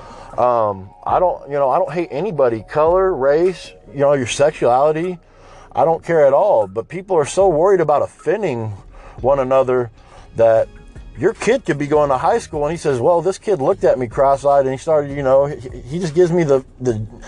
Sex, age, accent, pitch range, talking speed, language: male, 40-59, American, 115-160 Hz, 210 wpm, English